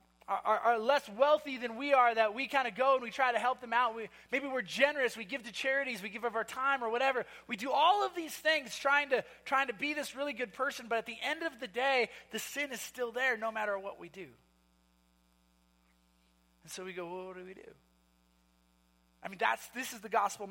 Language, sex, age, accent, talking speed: English, male, 20-39, American, 240 wpm